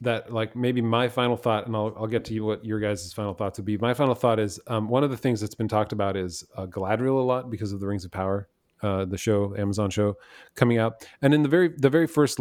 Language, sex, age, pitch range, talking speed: English, male, 30-49, 105-120 Hz, 275 wpm